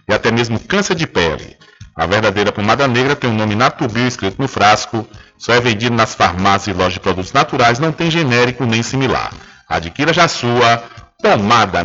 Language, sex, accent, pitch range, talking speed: Portuguese, male, Brazilian, 120-145 Hz, 185 wpm